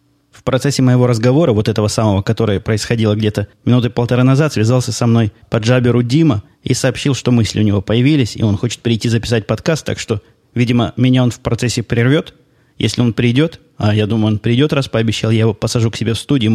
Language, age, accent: Russian, 20-39, native